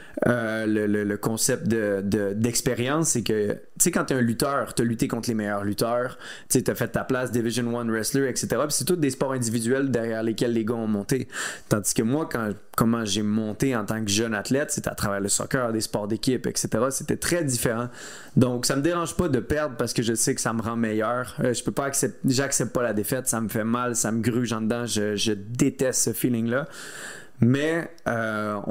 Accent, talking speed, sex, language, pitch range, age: Canadian, 225 wpm, male, French, 110-130 Hz, 20-39